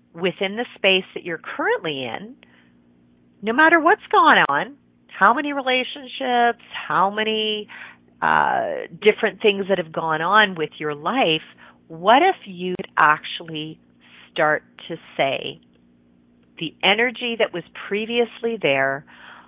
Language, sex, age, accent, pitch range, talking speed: English, female, 40-59, American, 130-190 Hz, 125 wpm